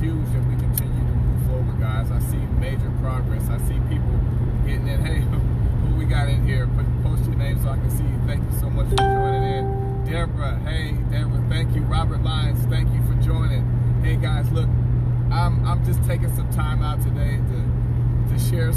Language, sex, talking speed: English, male, 200 wpm